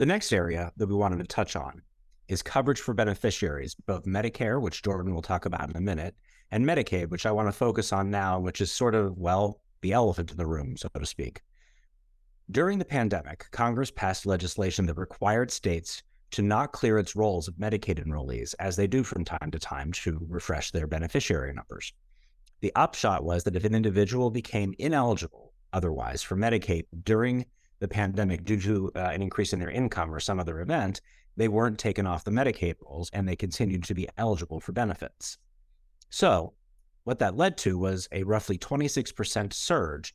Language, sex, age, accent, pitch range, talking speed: English, male, 30-49, American, 85-110 Hz, 190 wpm